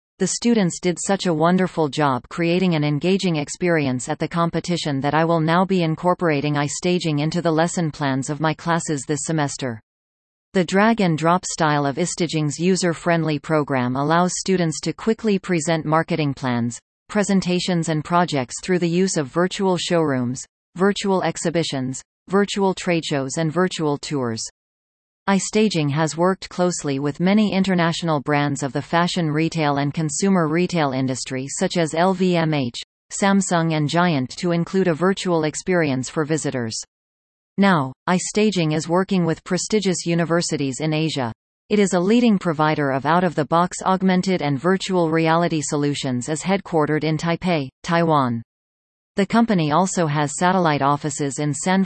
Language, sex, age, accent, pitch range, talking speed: English, female, 40-59, American, 145-180 Hz, 145 wpm